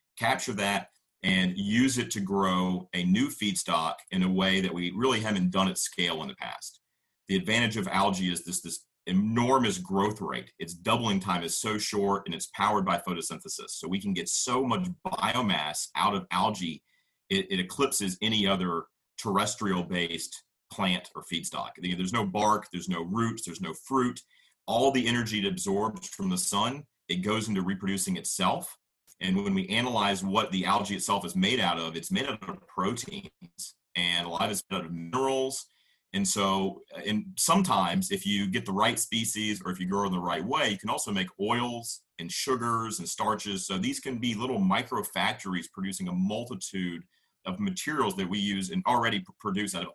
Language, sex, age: English, male, 40-59